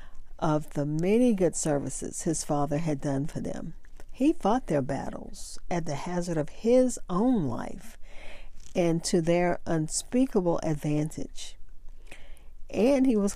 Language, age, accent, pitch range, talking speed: English, 50-69, American, 150-195 Hz, 135 wpm